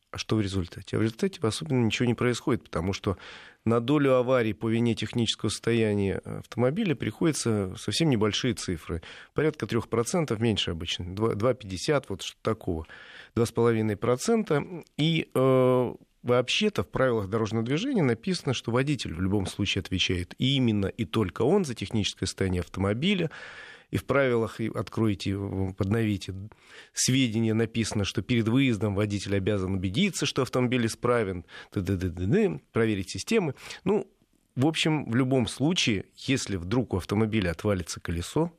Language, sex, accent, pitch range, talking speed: Russian, male, native, 100-130 Hz, 135 wpm